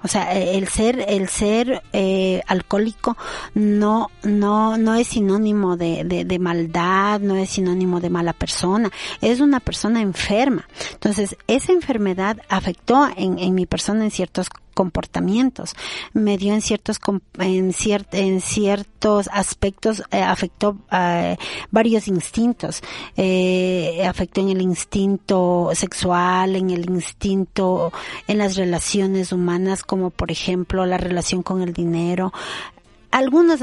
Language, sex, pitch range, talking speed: Spanish, female, 185-215 Hz, 135 wpm